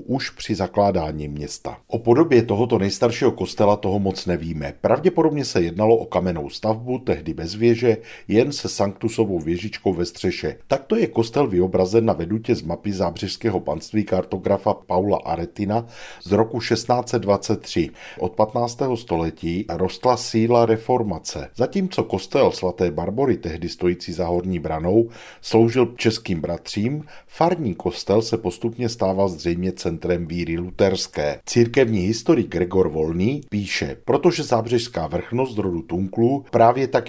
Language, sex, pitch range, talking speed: Czech, male, 90-115 Hz, 135 wpm